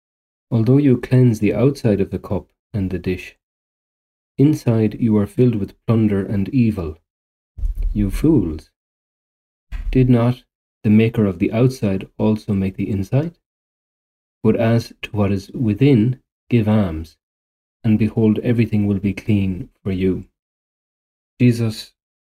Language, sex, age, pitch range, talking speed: English, male, 40-59, 95-115 Hz, 130 wpm